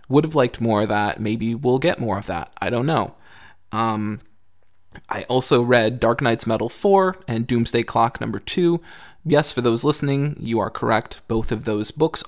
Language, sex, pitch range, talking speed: English, male, 105-125 Hz, 190 wpm